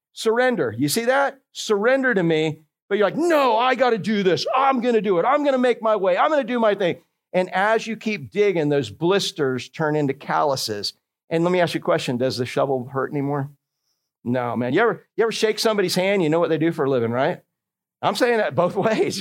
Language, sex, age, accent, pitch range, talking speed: English, male, 50-69, American, 150-215 Hz, 240 wpm